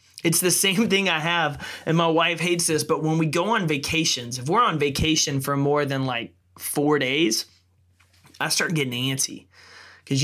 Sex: male